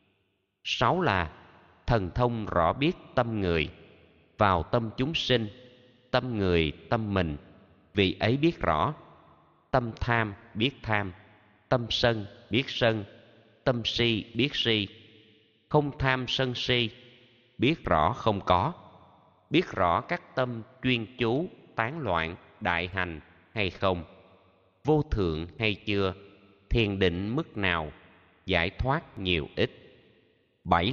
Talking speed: 125 wpm